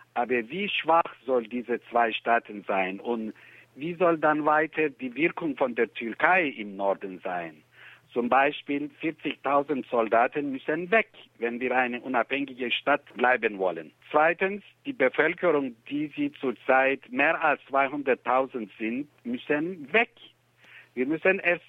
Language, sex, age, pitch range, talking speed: German, male, 60-79, 140-195 Hz, 135 wpm